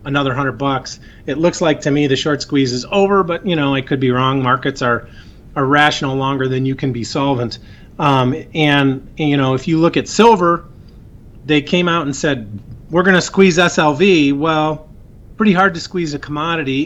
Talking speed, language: 205 wpm, English